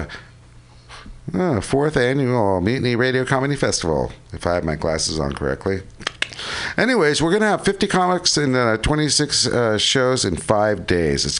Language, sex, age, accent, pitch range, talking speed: English, male, 50-69, American, 95-130 Hz, 160 wpm